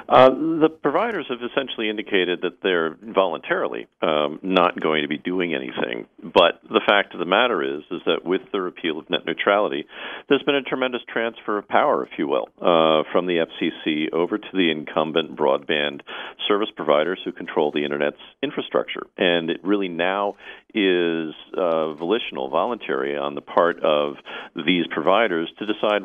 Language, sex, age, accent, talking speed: English, male, 50-69, American, 170 wpm